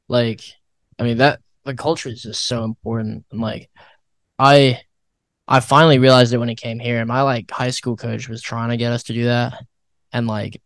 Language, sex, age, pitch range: English, male, 10-29, 115-130 Hz